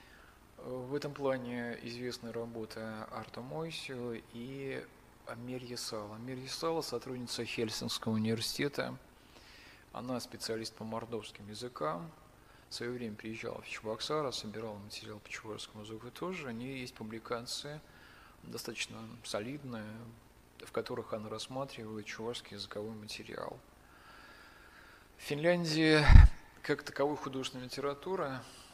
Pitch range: 110-130 Hz